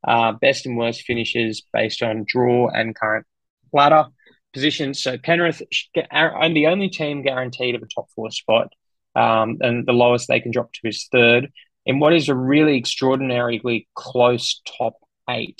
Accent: Australian